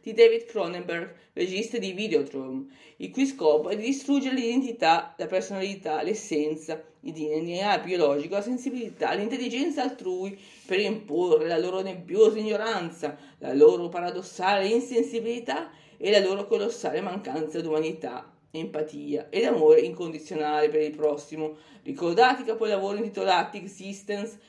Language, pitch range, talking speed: English, 155-230 Hz, 125 wpm